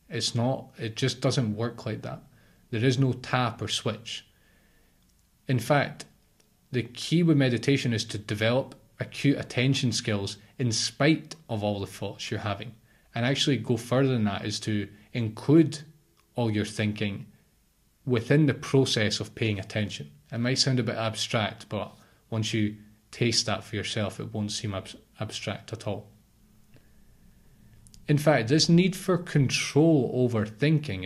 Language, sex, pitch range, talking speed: English, male, 105-130 Hz, 155 wpm